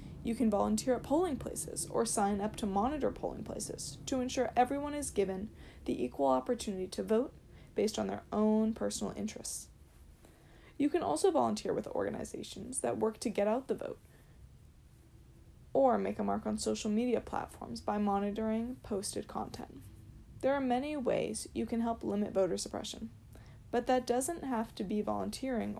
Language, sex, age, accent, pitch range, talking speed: English, female, 20-39, American, 205-255 Hz, 165 wpm